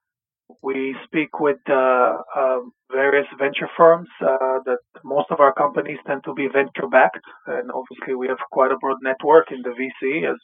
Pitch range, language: 130-150 Hz, English